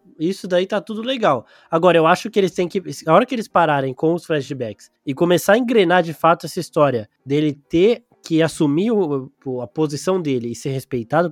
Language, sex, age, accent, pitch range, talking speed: Portuguese, male, 20-39, Brazilian, 140-180 Hz, 200 wpm